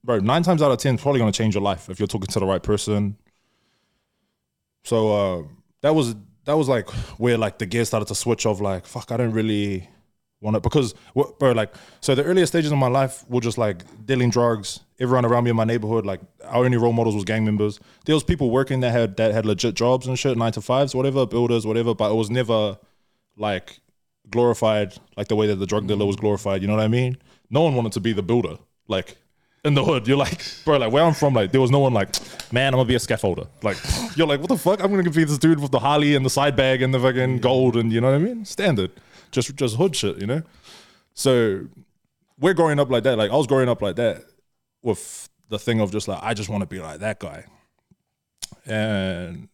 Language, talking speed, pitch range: English, 240 wpm, 105-135 Hz